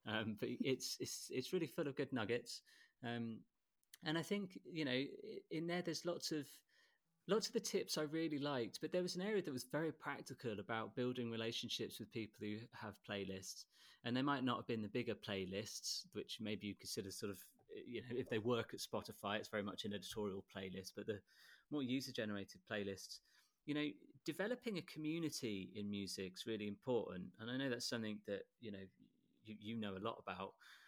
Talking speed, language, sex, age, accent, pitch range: 200 wpm, English, male, 30-49, British, 105-150 Hz